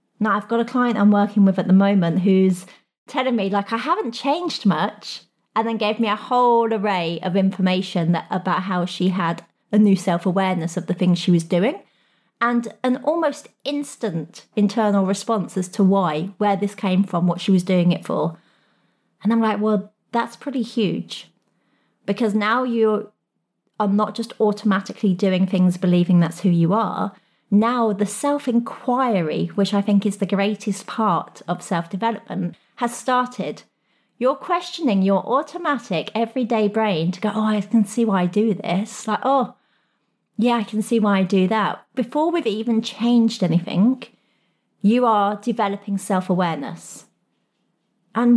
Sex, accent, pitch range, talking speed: female, British, 190-235 Hz, 165 wpm